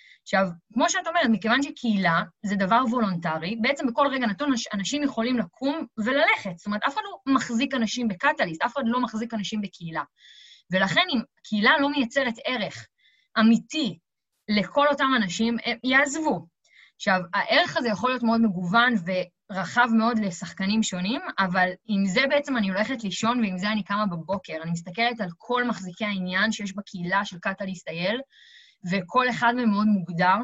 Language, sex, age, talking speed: Hebrew, female, 20-39, 160 wpm